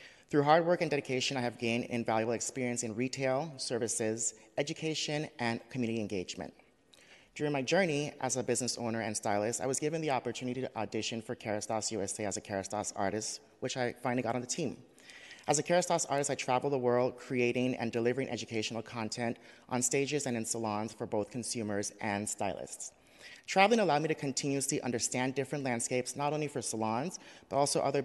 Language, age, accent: English, 30-49, American